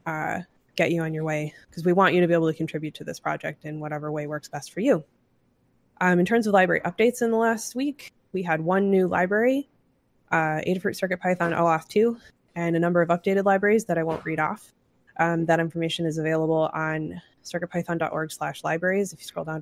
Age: 20-39